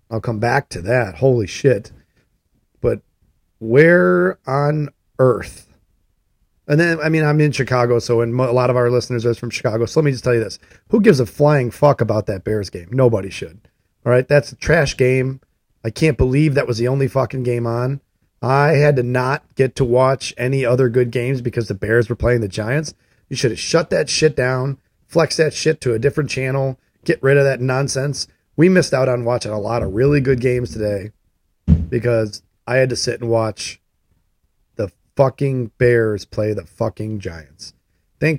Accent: American